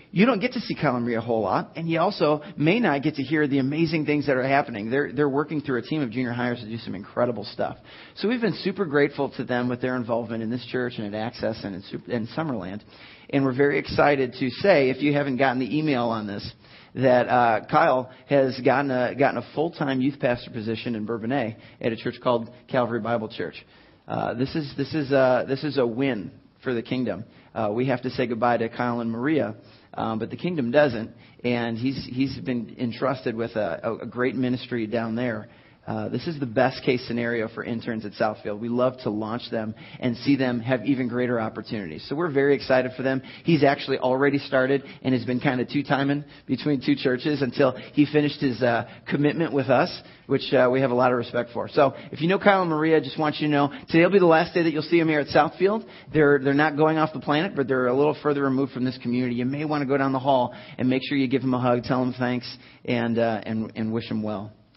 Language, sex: English, male